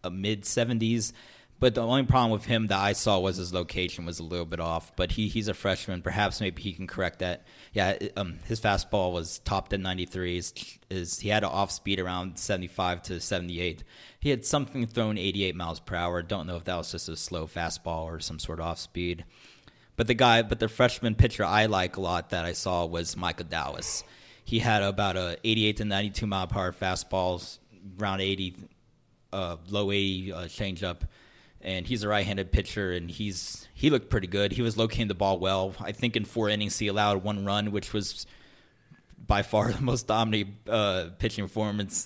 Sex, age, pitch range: male, 30-49, 90-110 Hz